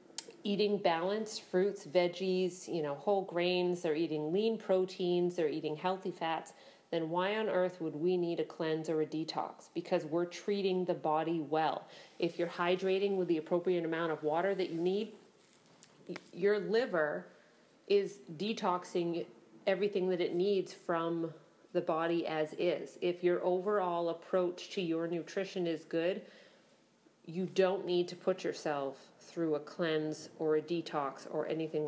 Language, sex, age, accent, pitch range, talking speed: English, female, 40-59, American, 165-190 Hz, 155 wpm